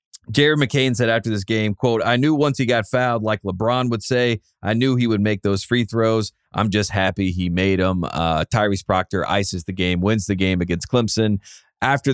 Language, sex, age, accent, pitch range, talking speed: English, male, 30-49, American, 95-120 Hz, 215 wpm